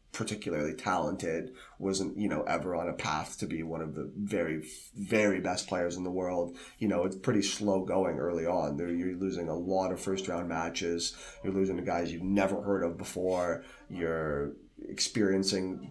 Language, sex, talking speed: English, male, 185 wpm